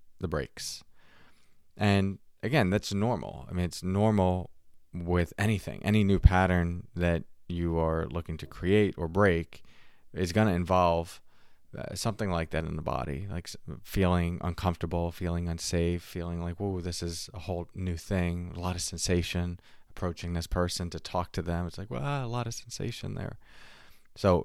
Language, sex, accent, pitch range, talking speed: English, male, American, 85-100 Hz, 165 wpm